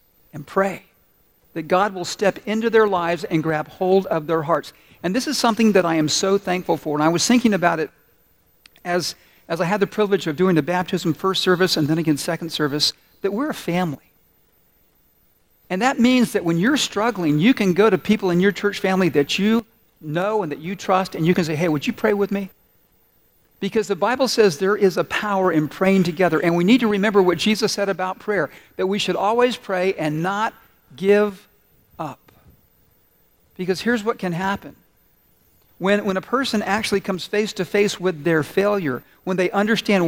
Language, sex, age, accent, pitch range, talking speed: English, male, 50-69, American, 165-205 Hz, 200 wpm